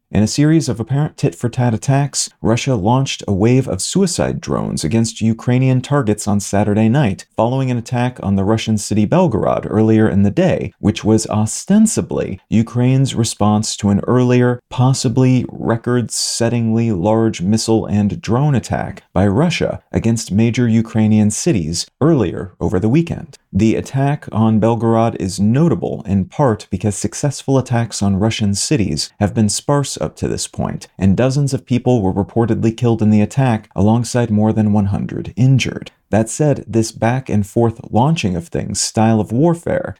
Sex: male